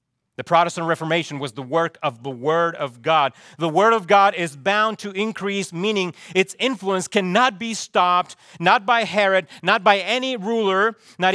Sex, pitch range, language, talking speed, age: male, 145-195 Hz, English, 175 wpm, 40-59